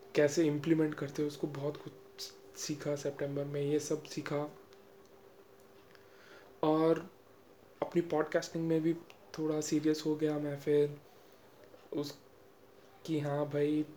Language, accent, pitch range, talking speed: Hindi, native, 145-155 Hz, 120 wpm